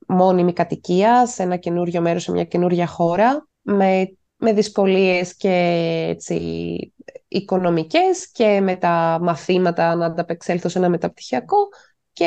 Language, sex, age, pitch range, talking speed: Greek, female, 20-39, 190-260 Hz, 125 wpm